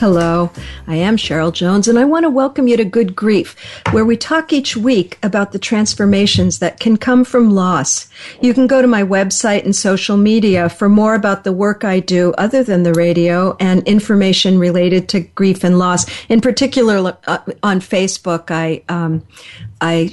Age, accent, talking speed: 50-69, American, 180 wpm